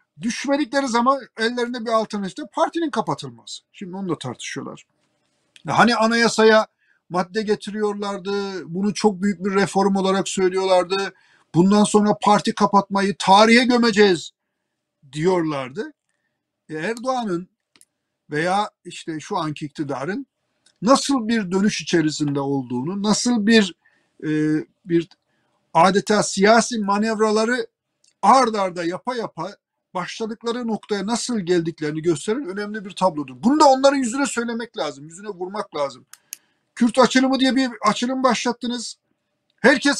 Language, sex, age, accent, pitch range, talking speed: Turkish, male, 50-69, native, 170-235 Hz, 115 wpm